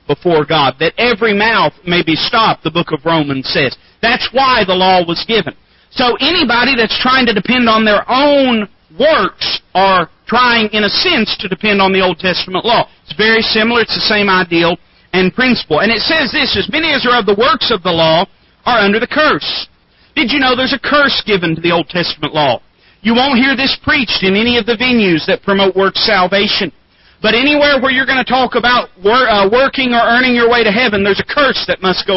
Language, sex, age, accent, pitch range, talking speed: English, male, 40-59, American, 180-245 Hz, 215 wpm